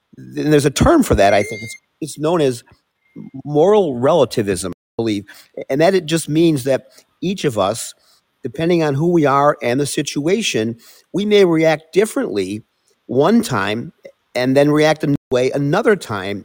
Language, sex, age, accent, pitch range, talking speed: English, male, 50-69, American, 120-170 Hz, 170 wpm